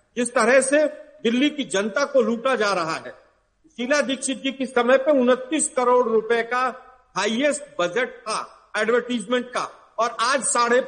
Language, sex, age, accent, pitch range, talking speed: Hindi, male, 50-69, native, 240-295 Hz, 160 wpm